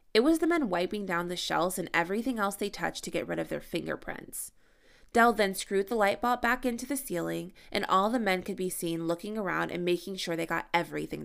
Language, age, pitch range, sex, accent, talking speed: English, 20-39, 175-245 Hz, female, American, 235 wpm